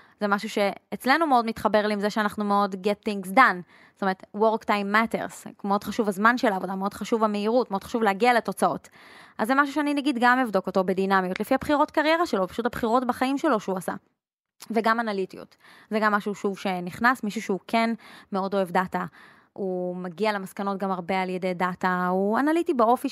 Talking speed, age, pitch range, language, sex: 185 wpm, 20-39, 195-235 Hz, Hebrew, female